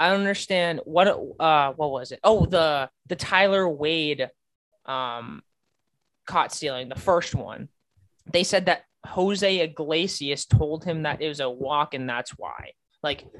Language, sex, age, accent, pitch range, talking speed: English, male, 20-39, American, 135-180 Hz, 155 wpm